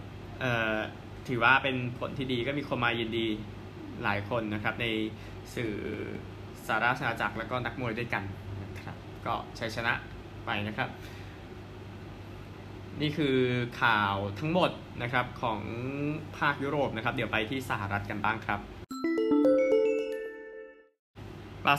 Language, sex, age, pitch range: Thai, male, 20-39, 110-145 Hz